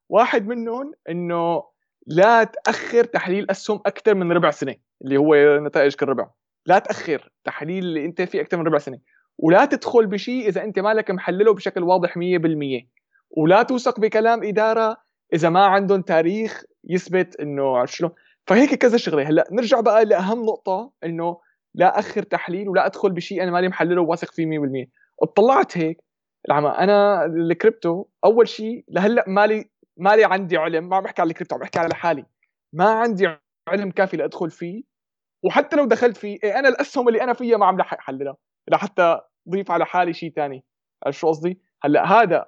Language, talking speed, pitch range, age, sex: Arabic, 170 wpm, 165-215 Hz, 20-39, male